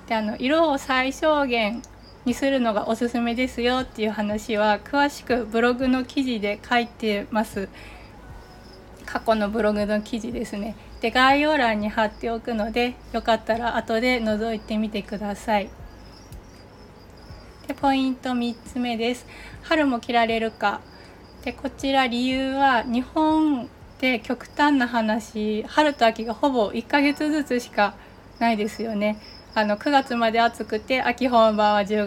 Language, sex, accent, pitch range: Japanese, female, native, 215-255 Hz